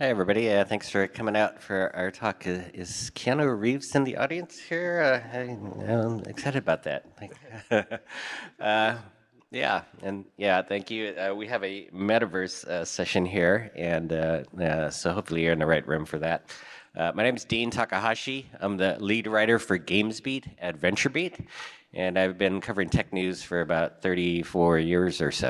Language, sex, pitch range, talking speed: English, male, 85-110 Hz, 175 wpm